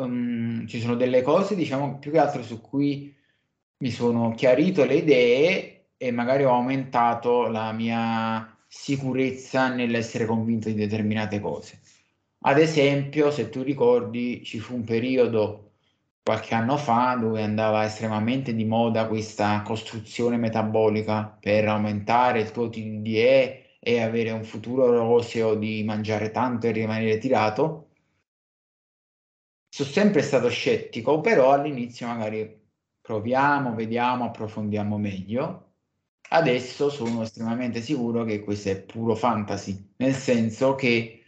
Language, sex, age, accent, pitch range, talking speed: Italian, male, 20-39, native, 110-130 Hz, 125 wpm